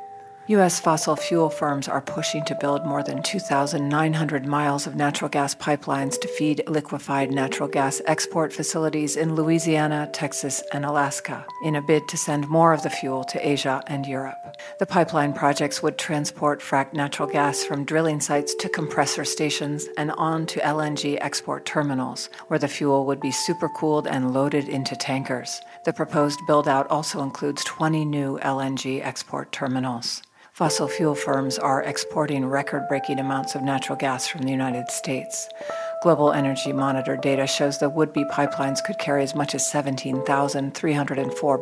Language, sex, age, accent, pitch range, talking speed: English, female, 50-69, American, 135-160 Hz, 155 wpm